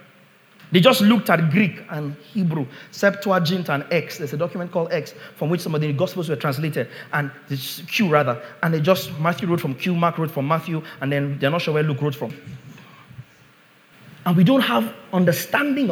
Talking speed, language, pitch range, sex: 195 wpm, English, 165-240 Hz, male